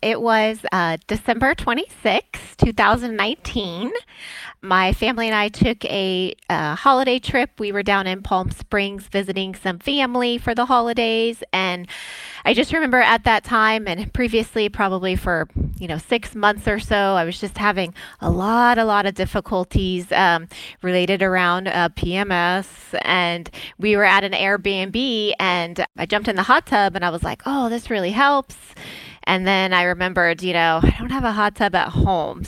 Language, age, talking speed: English, 20-39, 175 wpm